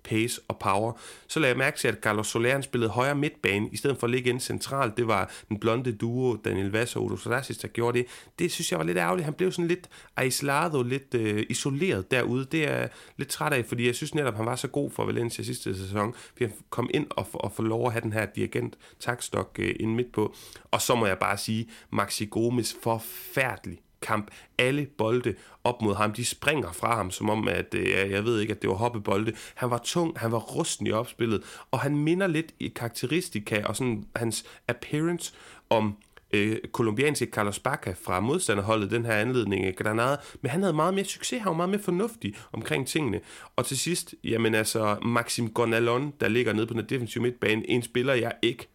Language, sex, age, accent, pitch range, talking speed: Danish, male, 30-49, native, 110-130 Hz, 215 wpm